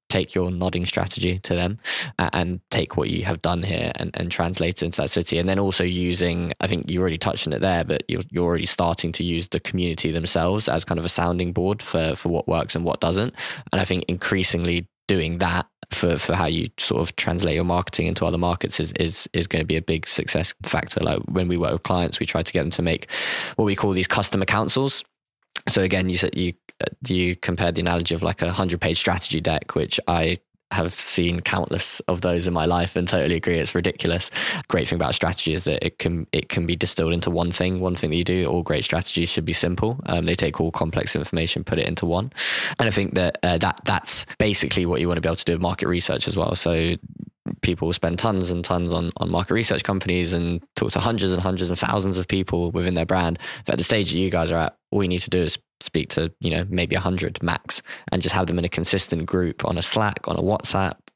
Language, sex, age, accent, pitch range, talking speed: English, male, 10-29, British, 85-95 Hz, 245 wpm